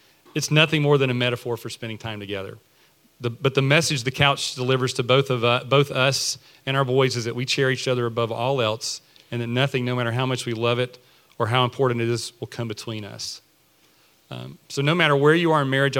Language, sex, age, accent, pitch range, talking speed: English, male, 40-59, American, 115-130 Hz, 235 wpm